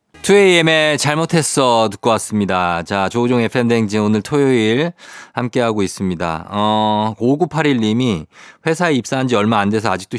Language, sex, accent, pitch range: Korean, male, native, 100-135 Hz